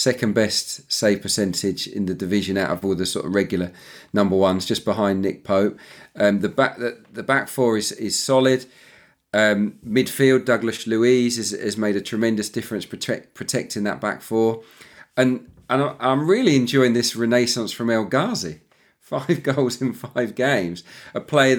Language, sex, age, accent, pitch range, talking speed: English, male, 40-59, British, 105-130 Hz, 175 wpm